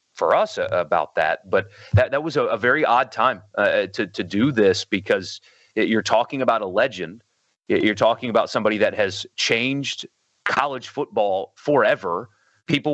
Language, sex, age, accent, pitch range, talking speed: English, male, 30-49, American, 120-180 Hz, 165 wpm